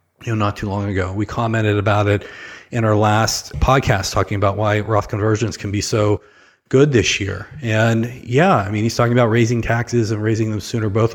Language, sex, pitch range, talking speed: English, male, 110-130 Hz, 210 wpm